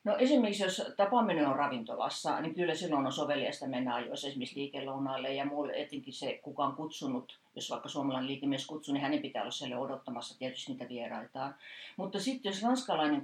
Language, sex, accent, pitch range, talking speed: Finnish, female, native, 135-185 Hz, 175 wpm